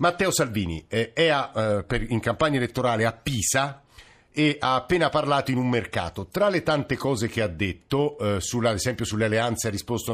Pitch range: 110-135 Hz